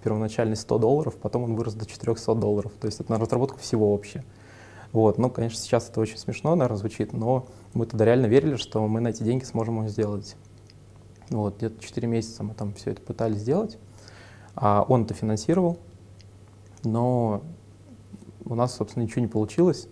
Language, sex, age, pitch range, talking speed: Russian, male, 20-39, 105-115 Hz, 180 wpm